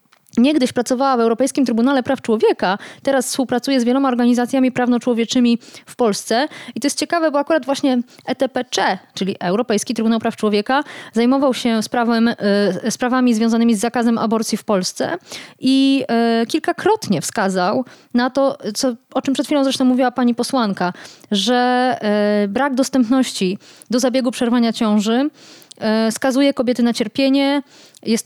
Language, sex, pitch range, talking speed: Polish, female, 215-265 Hz, 135 wpm